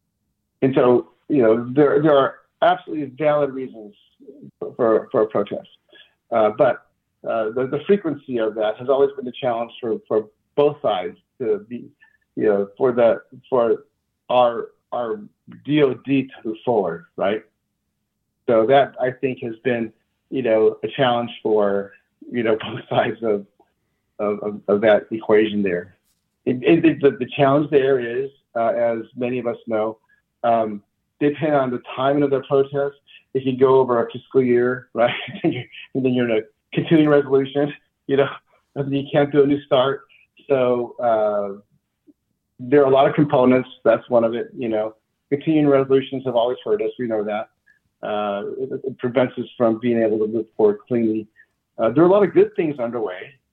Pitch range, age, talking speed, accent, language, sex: 110-145 Hz, 50-69, 175 wpm, American, English, male